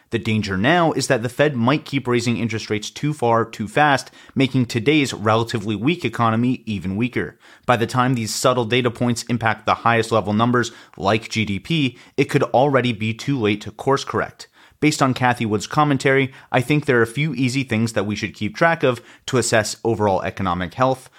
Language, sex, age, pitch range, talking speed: English, male, 30-49, 110-135 Hz, 200 wpm